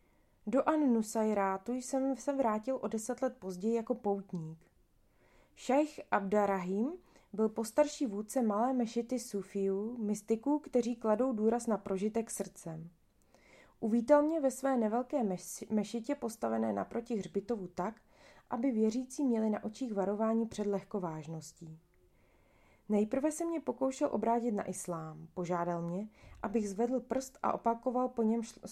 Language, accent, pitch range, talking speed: Czech, native, 190-240 Hz, 130 wpm